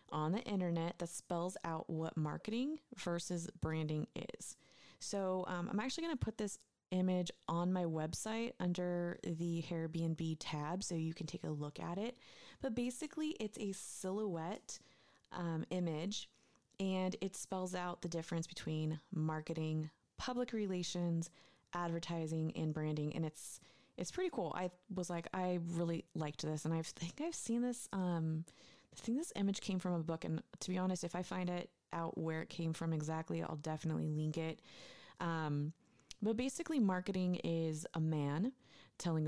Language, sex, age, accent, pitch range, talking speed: English, female, 20-39, American, 160-200 Hz, 165 wpm